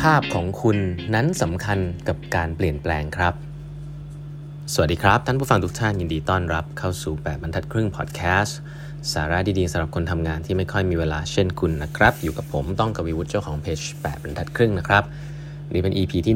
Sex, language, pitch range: male, Thai, 90-135 Hz